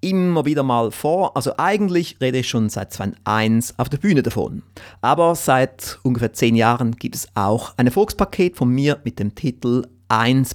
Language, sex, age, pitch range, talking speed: German, male, 30-49, 110-155 Hz, 175 wpm